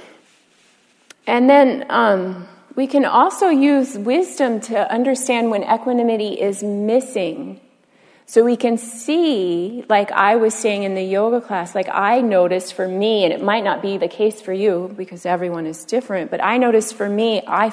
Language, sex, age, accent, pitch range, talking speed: English, female, 30-49, American, 180-230 Hz, 170 wpm